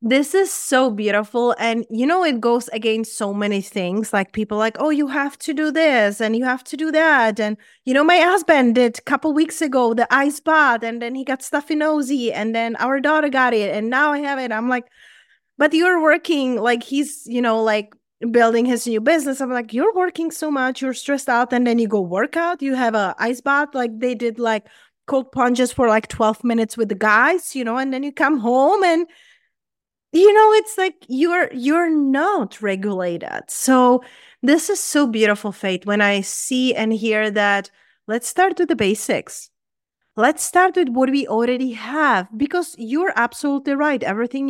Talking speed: 200 wpm